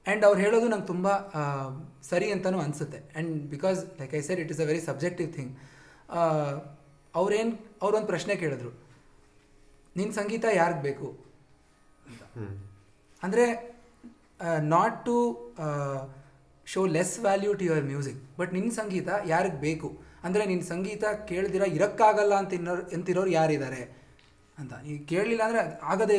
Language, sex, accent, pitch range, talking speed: Kannada, male, native, 150-195 Hz, 130 wpm